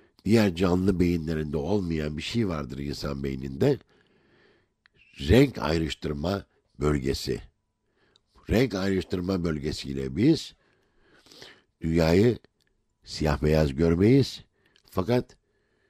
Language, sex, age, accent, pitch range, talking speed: Turkish, male, 60-79, native, 80-110 Hz, 80 wpm